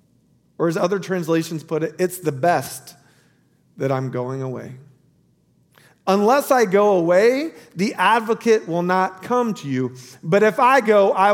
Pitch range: 155-215 Hz